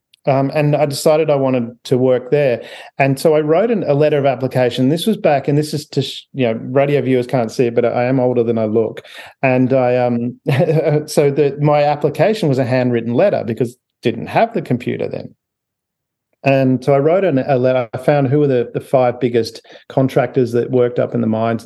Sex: male